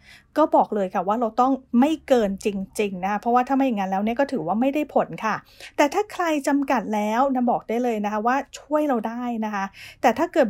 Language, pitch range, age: English, 215-275 Hz, 30-49